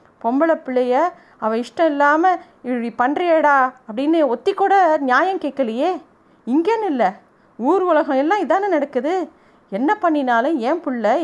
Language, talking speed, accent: Tamil, 125 wpm, native